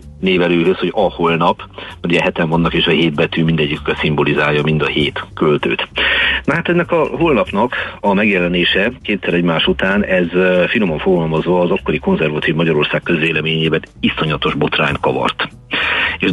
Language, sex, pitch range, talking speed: Hungarian, male, 80-95 Hz, 145 wpm